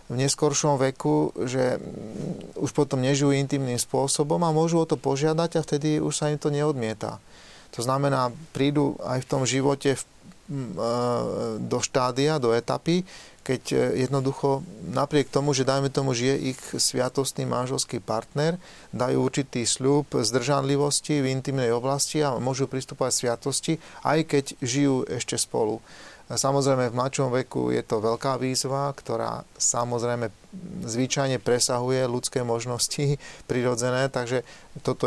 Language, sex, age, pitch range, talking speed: Slovak, male, 30-49, 120-140 Hz, 135 wpm